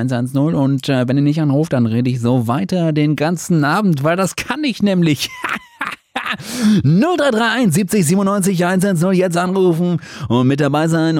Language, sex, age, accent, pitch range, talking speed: German, male, 30-49, German, 115-175 Hz, 150 wpm